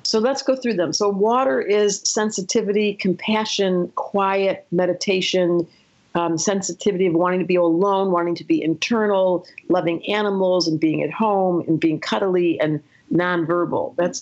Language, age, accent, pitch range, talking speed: English, 50-69, American, 175-220 Hz, 150 wpm